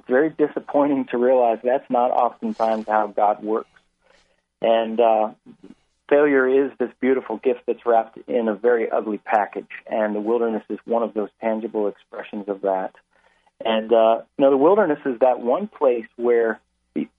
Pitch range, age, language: 95-125 Hz, 40-59, English